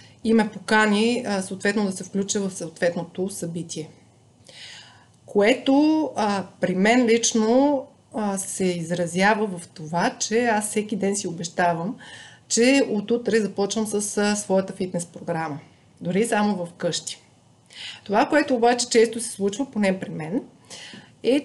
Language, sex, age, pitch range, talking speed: Bulgarian, female, 30-49, 180-225 Hz, 135 wpm